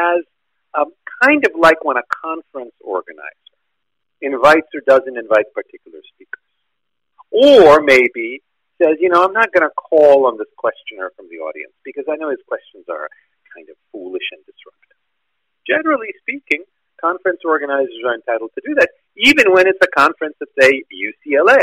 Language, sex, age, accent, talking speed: English, male, 50-69, American, 160 wpm